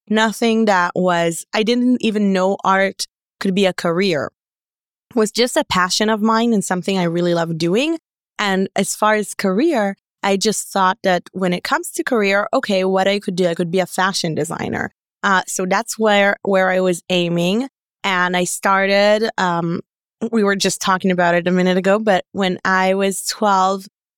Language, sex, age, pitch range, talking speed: English, female, 20-39, 180-210 Hz, 185 wpm